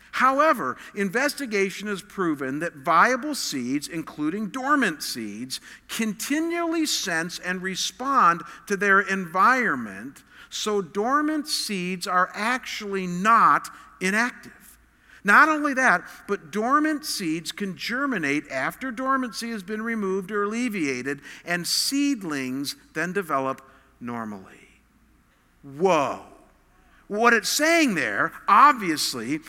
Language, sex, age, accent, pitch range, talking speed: English, male, 50-69, American, 195-270 Hz, 100 wpm